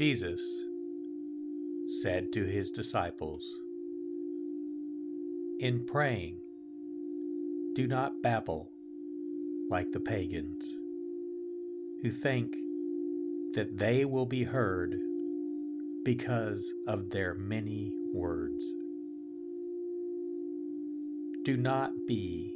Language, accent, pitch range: English, American, 305-335 Hz